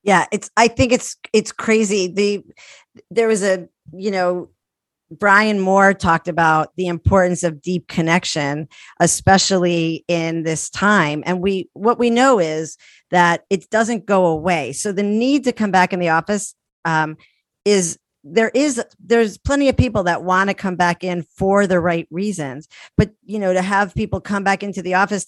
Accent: American